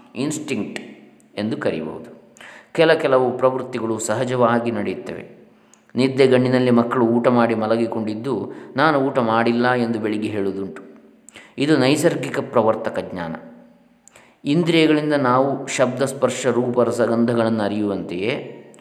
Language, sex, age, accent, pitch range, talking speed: Kannada, male, 20-39, native, 115-135 Hz, 95 wpm